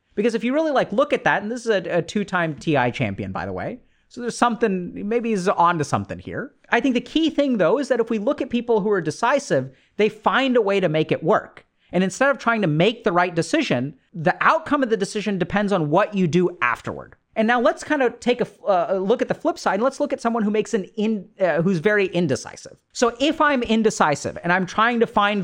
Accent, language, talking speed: American, English, 250 wpm